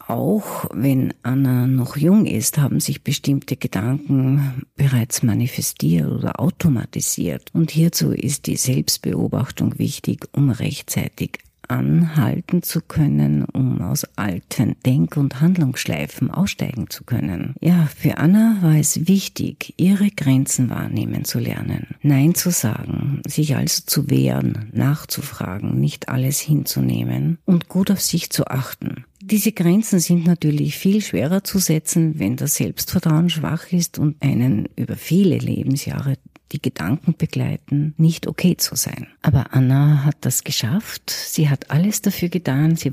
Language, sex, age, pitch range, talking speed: German, female, 50-69, 135-165 Hz, 135 wpm